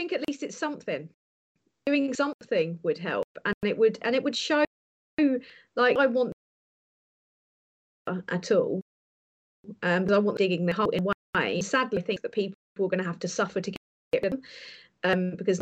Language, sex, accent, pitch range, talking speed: English, female, British, 190-240 Hz, 185 wpm